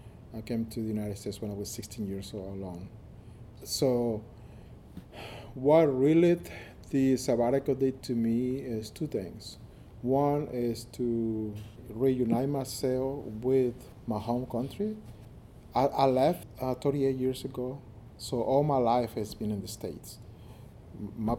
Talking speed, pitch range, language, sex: 140 wpm, 105-125 Hz, English, male